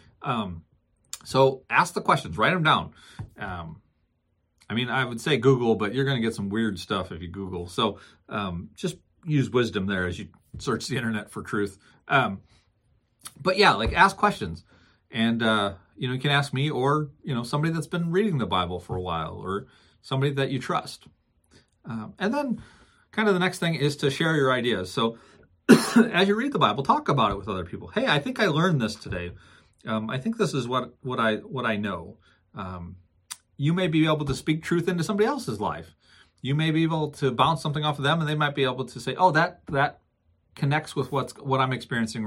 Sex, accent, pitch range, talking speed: male, American, 105-150 Hz, 215 wpm